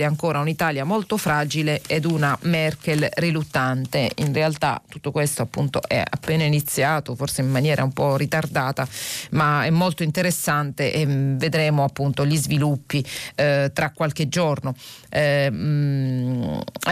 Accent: native